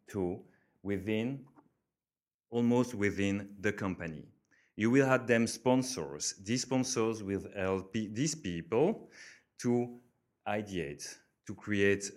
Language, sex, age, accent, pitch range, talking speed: French, male, 30-49, French, 95-120 Hz, 105 wpm